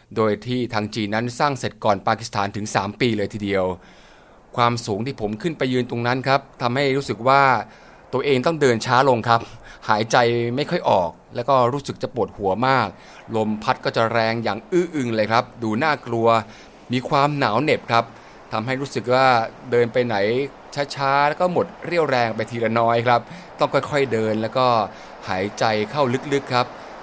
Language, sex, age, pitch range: Thai, male, 20-39, 110-135 Hz